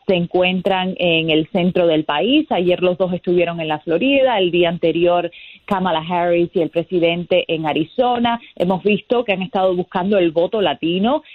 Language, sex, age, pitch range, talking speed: Spanish, female, 30-49, 170-205 Hz, 175 wpm